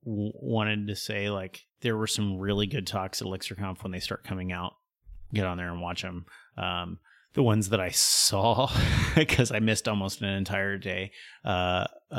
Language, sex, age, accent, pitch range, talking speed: English, male, 30-49, American, 95-110 Hz, 180 wpm